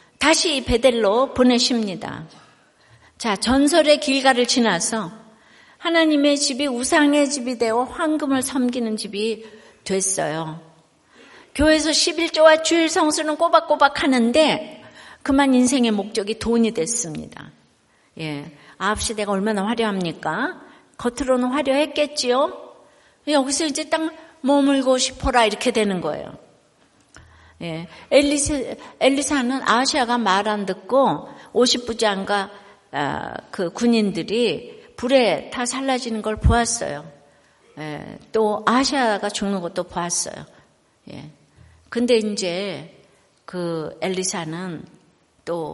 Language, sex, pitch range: Korean, female, 200-280 Hz